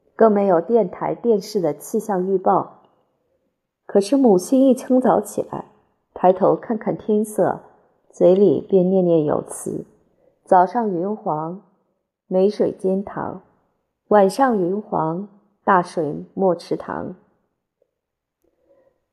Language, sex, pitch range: Chinese, female, 180-225 Hz